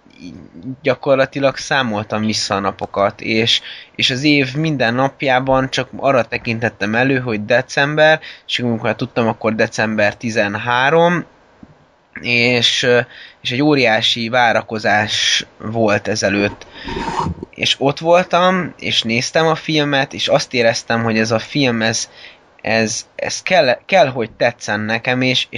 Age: 20-39